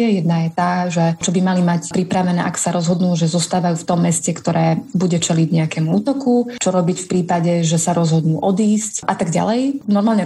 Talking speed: 200 wpm